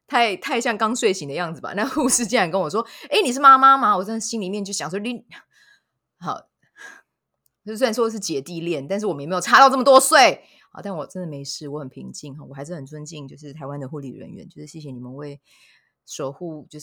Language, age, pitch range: Chinese, 20-39, 145-200 Hz